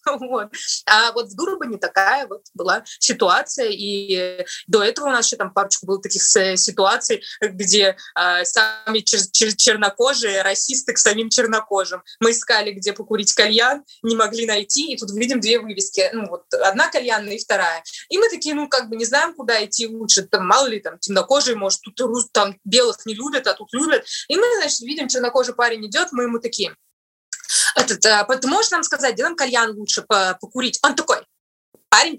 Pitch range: 215-300 Hz